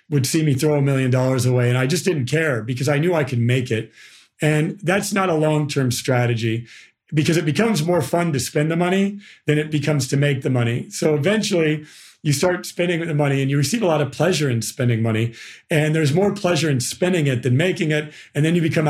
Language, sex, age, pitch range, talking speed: English, male, 40-59, 130-160 Hz, 230 wpm